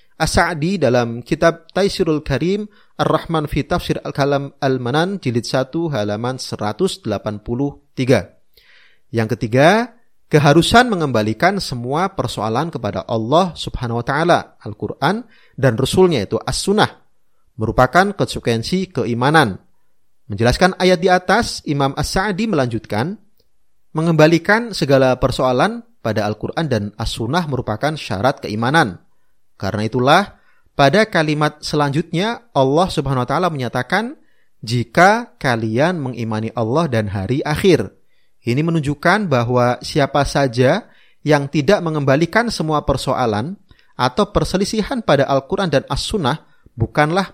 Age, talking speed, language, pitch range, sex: 30-49, 105 wpm, Indonesian, 120-170 Hz, male